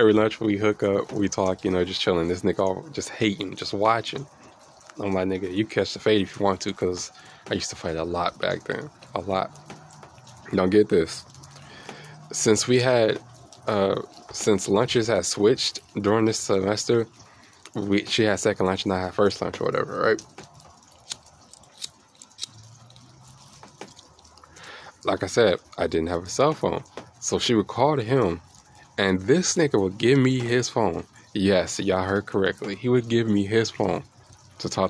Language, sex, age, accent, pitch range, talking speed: English, male, 20-39, American, 95-115 Hz, 180 wpm